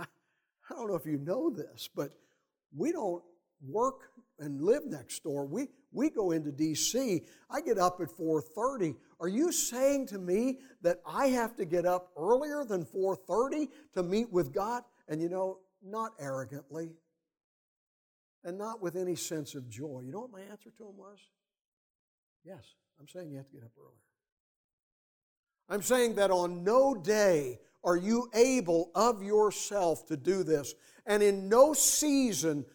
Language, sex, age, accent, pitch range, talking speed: English, male, 60-79, American, 160-245 Hz, 165 wpm